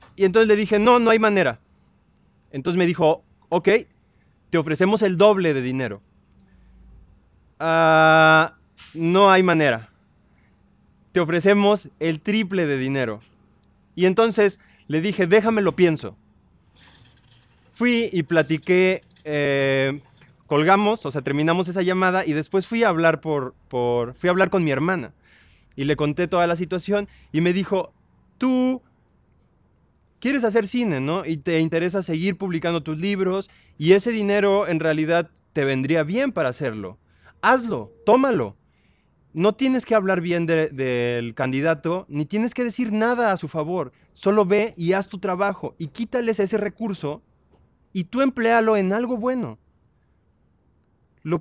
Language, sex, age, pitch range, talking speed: Spanish, male, 20-39, 145-210 Hz, 145 wpm